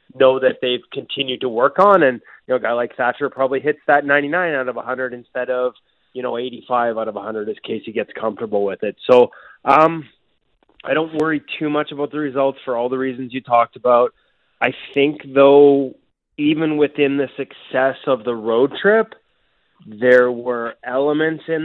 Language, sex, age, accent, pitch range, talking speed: English, male, 20-39, American, 125-145 Hz, 190 wpm